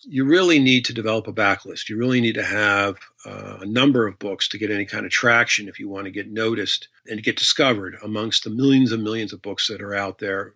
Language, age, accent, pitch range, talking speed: English, 50-69, American, 105-130 Hz, 245 wpm